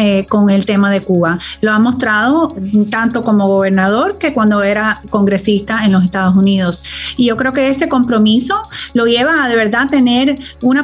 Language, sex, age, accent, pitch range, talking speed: English, female, 30-49, American, 210-275 Hz, 175 wpm